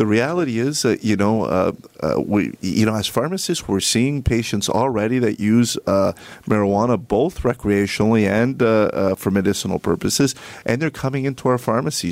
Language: English